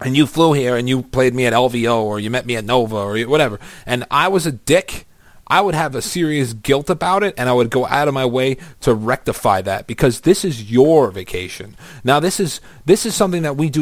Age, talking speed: 30-49, 245 wpm